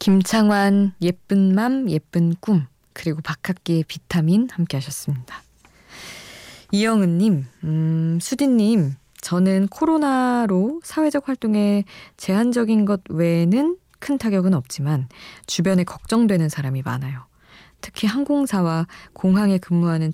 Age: 20-39